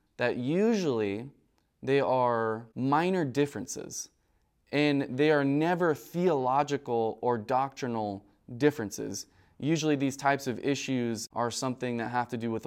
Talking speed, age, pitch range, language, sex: 125 wpm, 20-39, 110-135 Hz, English, male